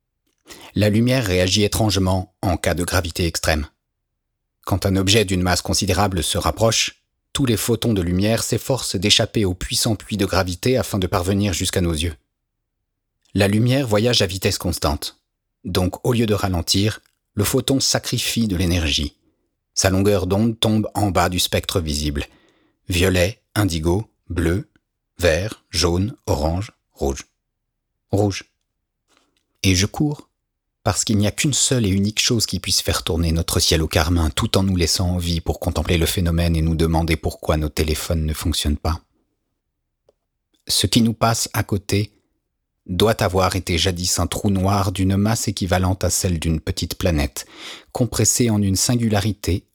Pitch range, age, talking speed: 85-105 Hz, 40-59, 160 wpm